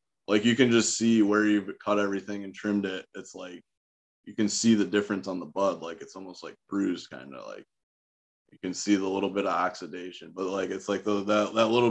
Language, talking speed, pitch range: English, 225 wpm, 95-110 Hz